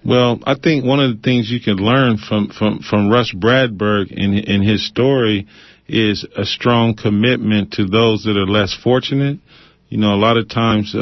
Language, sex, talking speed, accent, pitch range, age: English, male, 190 wpm, American, 105-125 Hz, 40-59